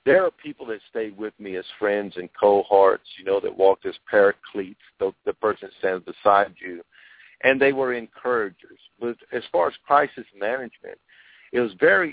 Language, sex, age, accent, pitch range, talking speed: English, male, 50-69, American, 105-140 Hz, 185 wpm